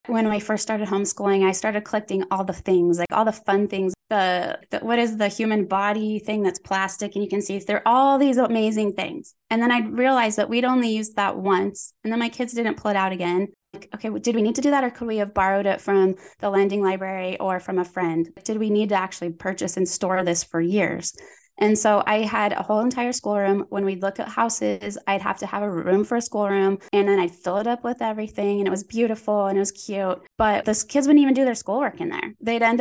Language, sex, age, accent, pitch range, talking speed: English, female, 20-39, American, 190-220 Hz, 250 wpm